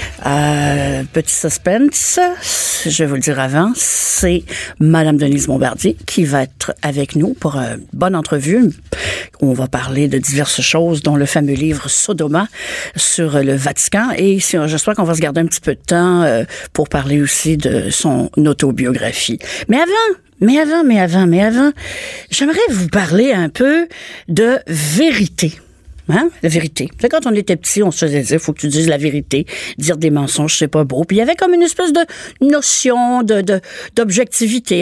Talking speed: 175 wpm